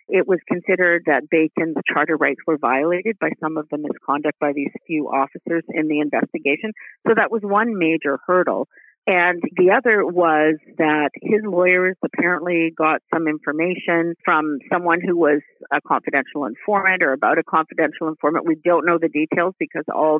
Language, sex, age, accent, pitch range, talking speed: English, female, 50-69, American, 155-200 Hz, 170 wpm